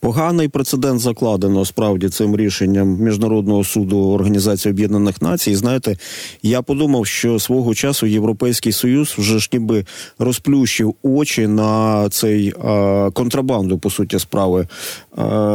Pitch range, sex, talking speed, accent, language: 100-120 Hz, male, 125 wpm, native, Ukrainian